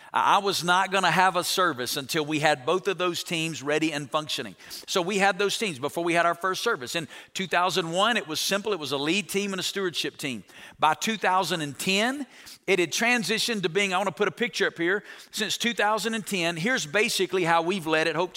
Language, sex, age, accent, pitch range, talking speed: English, male, 50-69, American, 165-215 Hz, 220 wpm